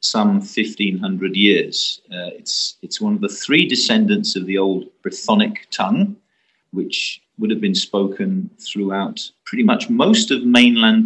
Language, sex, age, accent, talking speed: English, male, 40-59, British, 145 wpm